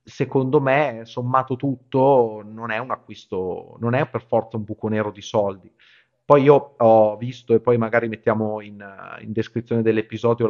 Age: 30-49